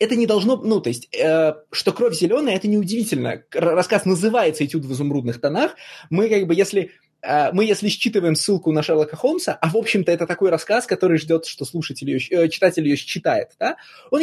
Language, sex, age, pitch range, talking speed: Russian, male, 20-39, 150-205 Hz, 200 wpm